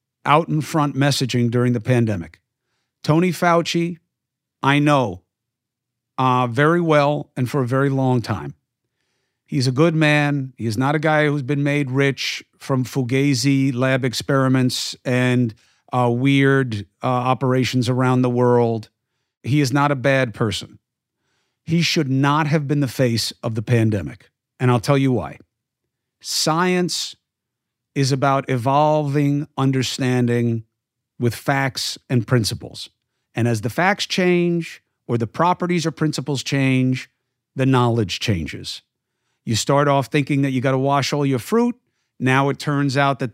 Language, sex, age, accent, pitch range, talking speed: English, male, 50-69, American, 125-145 Hz, 145 wpm